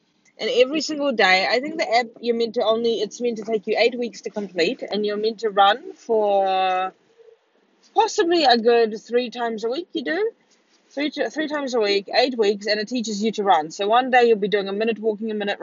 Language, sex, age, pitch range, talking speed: English, female, 20-39, 210-280 Hz, 235 wpm